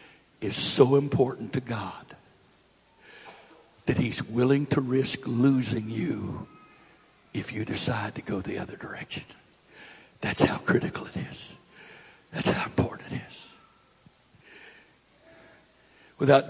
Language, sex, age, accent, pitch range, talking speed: English, male, 60-79, American, 120-140 Hz, 115 wpm